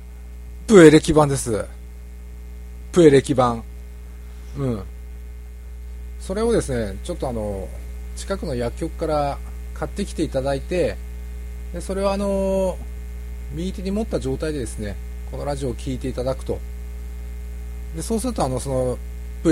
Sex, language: male, Japanese